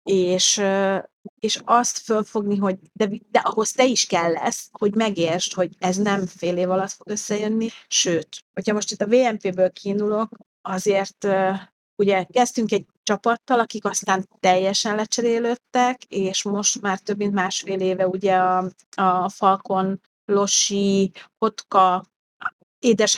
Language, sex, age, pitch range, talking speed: Hungarian, female, 30-49, 185-230 Hz, 135 wpm